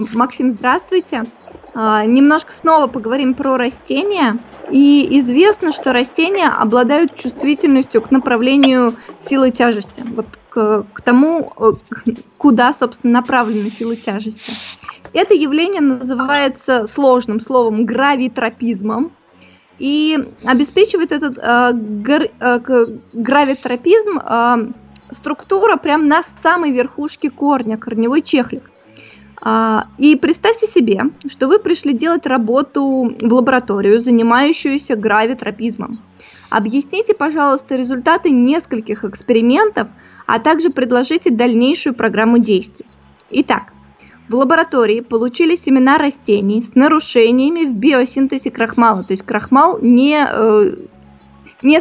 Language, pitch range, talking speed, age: Russian, 230-295 Hz, 100 wpm, 20-39